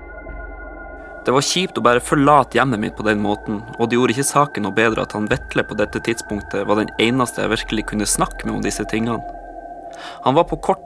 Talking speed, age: 220 wpm, 20-39